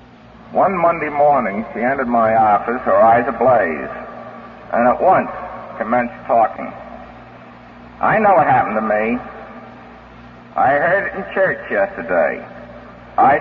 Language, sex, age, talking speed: English, male, 60-79, 125 wpm